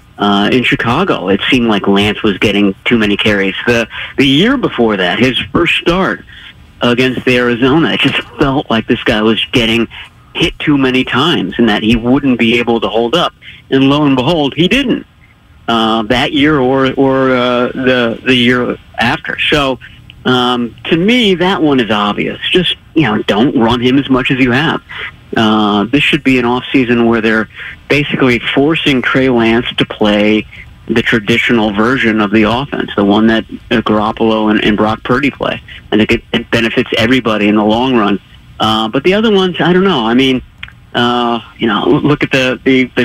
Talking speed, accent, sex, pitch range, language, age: 190 wpm, American, male, 110-130 Hz, English, 50-69